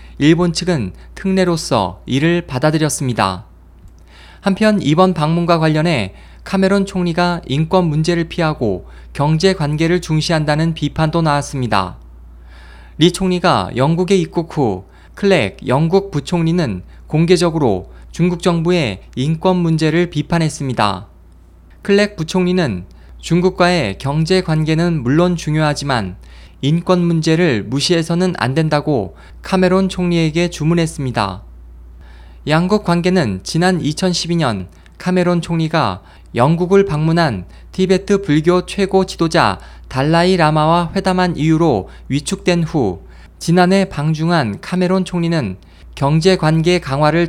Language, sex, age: Korean, male, 20-39